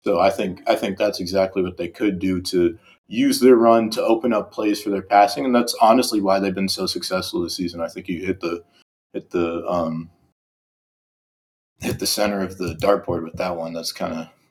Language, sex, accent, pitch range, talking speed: English, male, American, 95-125 Hz, 210 wpm